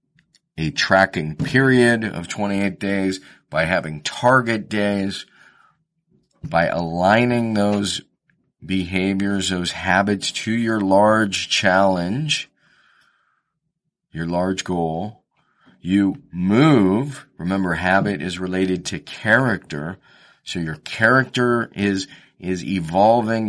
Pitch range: 95-125 Hz